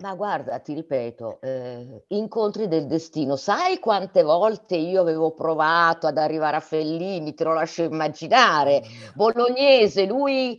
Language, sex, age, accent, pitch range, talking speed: Italian, female, 50-69, native, 140-210 Hz, 135 wpm